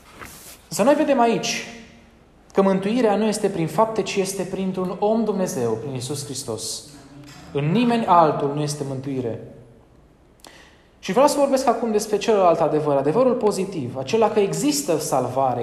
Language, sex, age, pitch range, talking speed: Romanian, male, 20-39, 125-190 Hz, 145 wpm